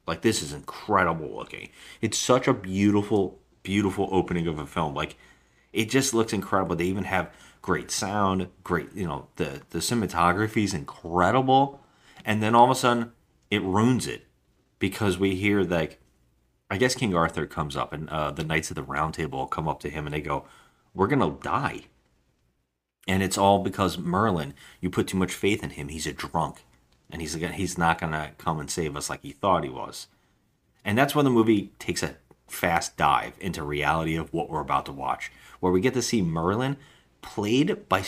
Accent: American